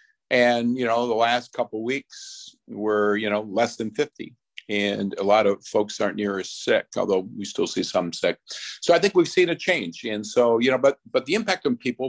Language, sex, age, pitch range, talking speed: English, male, 50-69, 105-130 Hz, 230 wpm